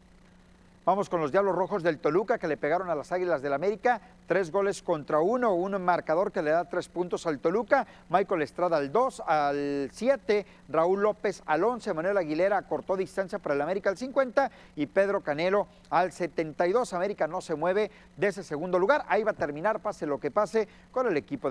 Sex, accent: male, Mexican